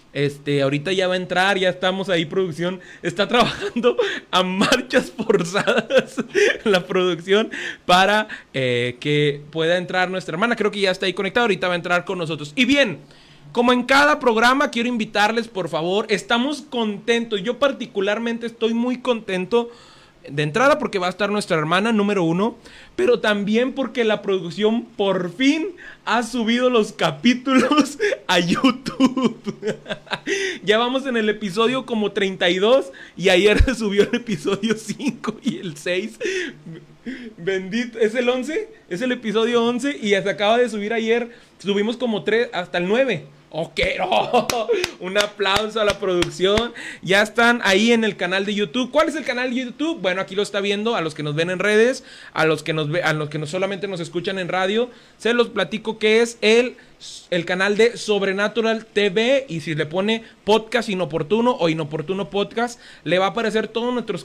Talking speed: 165 wpm